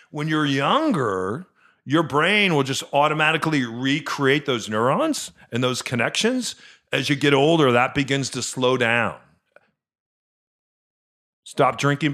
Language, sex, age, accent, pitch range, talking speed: English, male, 40-59, American, 125-160 Hz, 125 wpm